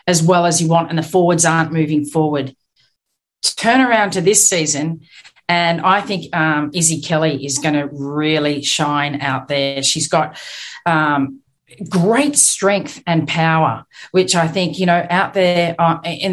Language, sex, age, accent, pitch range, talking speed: English, female, 40-59, Australian, 155-180 Hz, 165 wpm